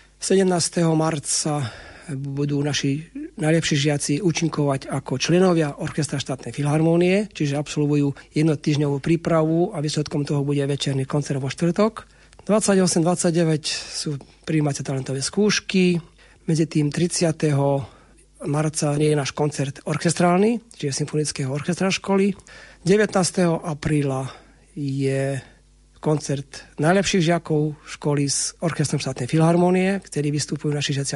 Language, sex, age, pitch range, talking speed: Slovak, male, 40-59, 145-175 Hz, 110 wpm